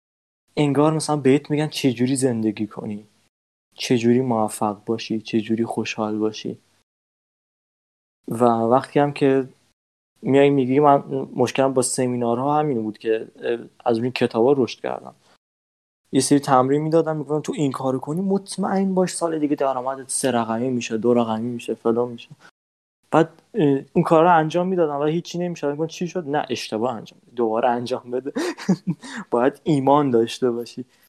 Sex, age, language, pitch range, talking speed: male, 20-39, Persian, 115-150 Hz, 150 wpm